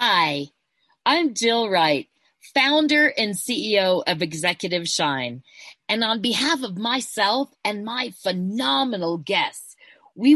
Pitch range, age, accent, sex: 180-265 Hz, 40-59, American, female